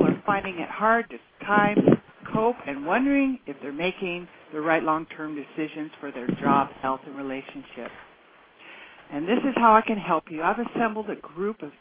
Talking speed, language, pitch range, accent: 175 wpm, English, 165-235 Hz, American